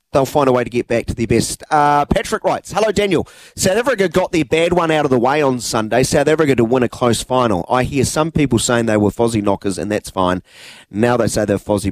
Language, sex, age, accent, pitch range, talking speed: English, male, 30-49, Australian, 100-125 Hz, 255 wpm